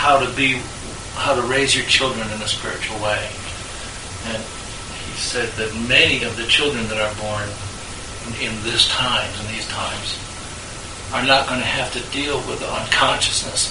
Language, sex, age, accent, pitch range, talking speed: English, male, 60-79, American, 100-120 Hz, 175 wpm